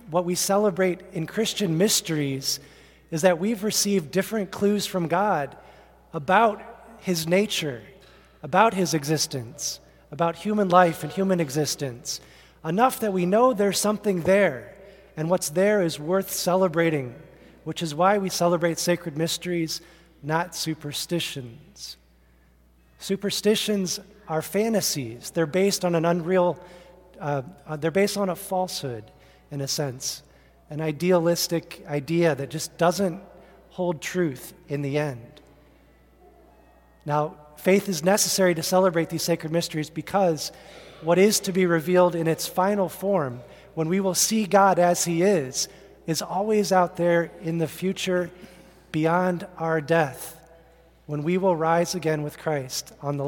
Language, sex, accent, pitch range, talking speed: English, male, American, 155-190 Hz, 135 wpm